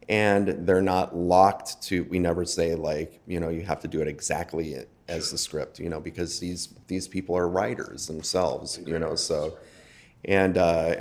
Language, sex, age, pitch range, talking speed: English, male, 30-49, 85-95 Hz, 185 wpm